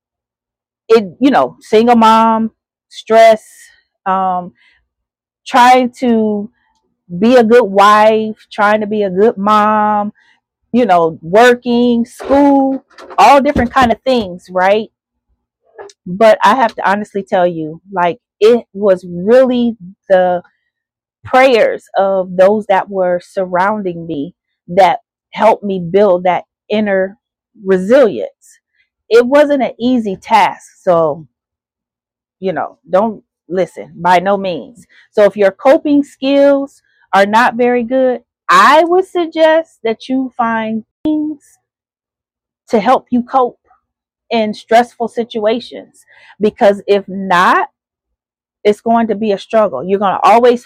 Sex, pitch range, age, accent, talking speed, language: female, 195-250 Hz, 30-49, American, 125 wpm, English